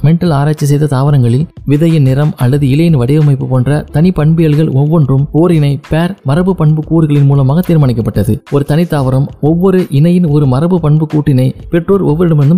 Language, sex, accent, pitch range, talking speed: Tamil, male, native, 140-160 Hz, 115 wpm